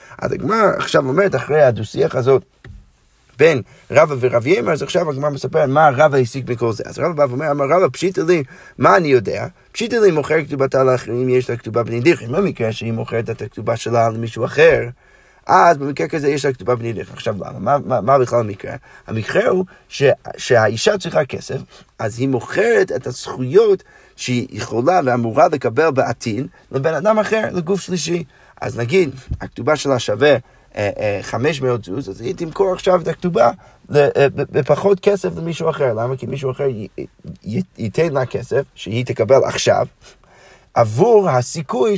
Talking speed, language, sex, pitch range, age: 100 wpm, Hebrew, male, 125-175 Hz, 30-49